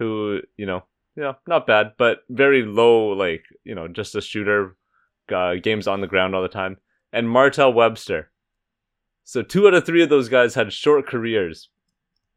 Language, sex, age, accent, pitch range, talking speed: English, male, 20-39, American, 95-115 Hz, 180 wpm